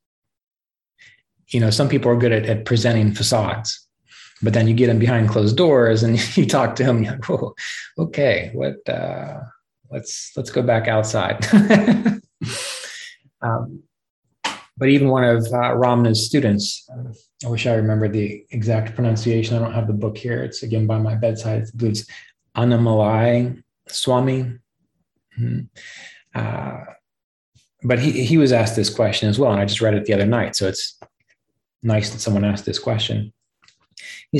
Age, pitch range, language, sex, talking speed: 20-39, 110-125 Hz, English, male, 155 wpm